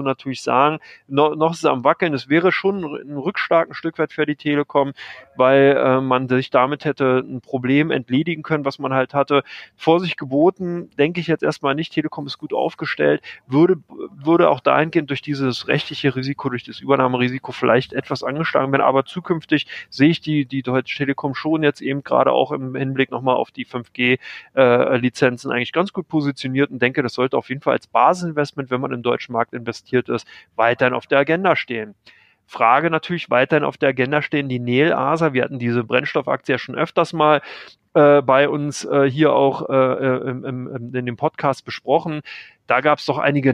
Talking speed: 195 wpm